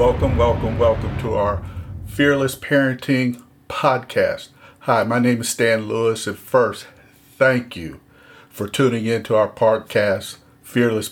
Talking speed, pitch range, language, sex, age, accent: 135 wpm, 110-130 Hz, English, male, 50-69, American